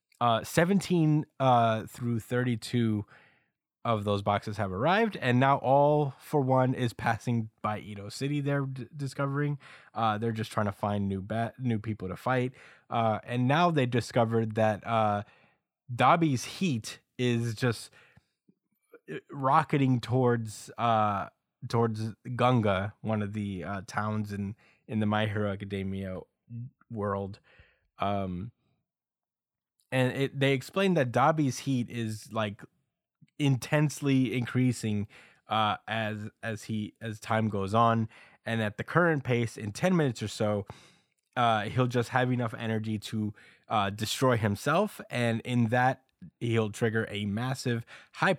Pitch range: 105-130 Hz